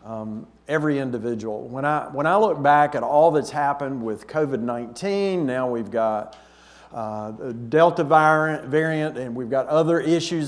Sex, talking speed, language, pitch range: male, 160 wpm, English, 130-170 Hz